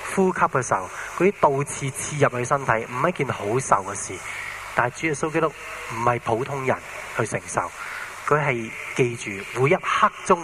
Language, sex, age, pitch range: Chinese, male, 20-39, 115-180 Hz